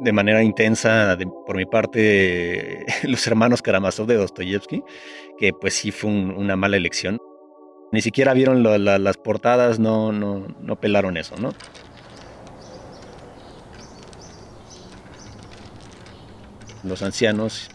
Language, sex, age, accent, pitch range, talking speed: Spanish, male, 30-49, Mexican, 95-110 Hz, 120 wpm